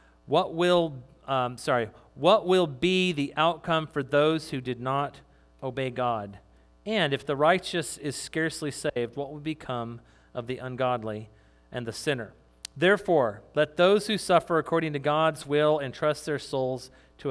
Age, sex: 40-59, male